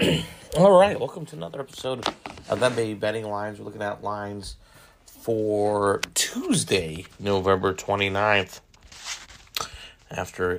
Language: English